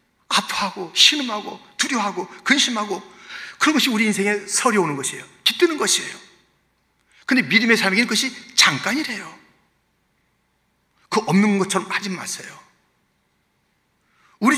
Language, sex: Korean, male